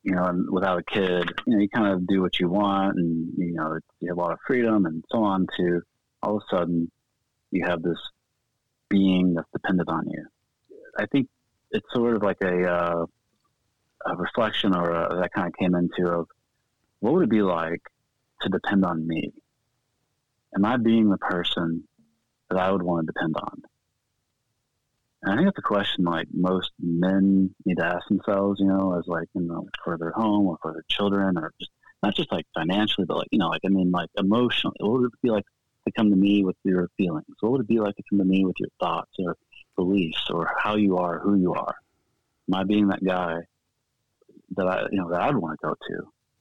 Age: 30-49